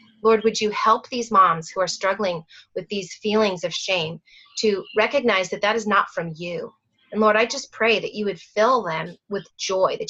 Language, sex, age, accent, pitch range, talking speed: English, female, 30-49, American, 190-235 Hz, 210 wpm